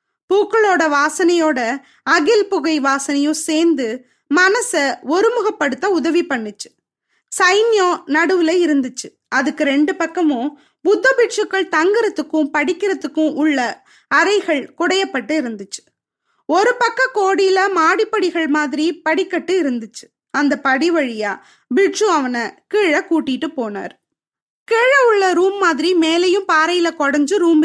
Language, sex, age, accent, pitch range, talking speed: Tamil, female, 20-39, native, 290-380 Hz, 100 wpm